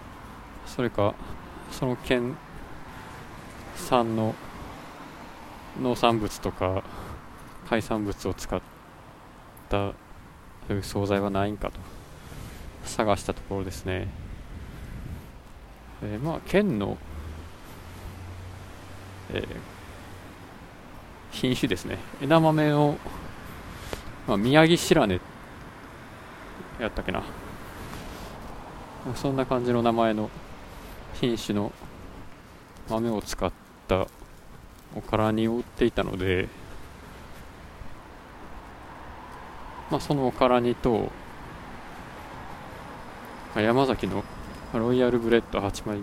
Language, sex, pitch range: Japanese, male, 90-120 Hz